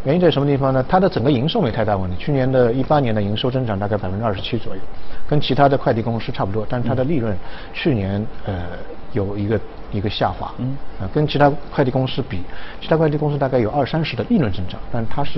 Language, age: Chinese, 50-69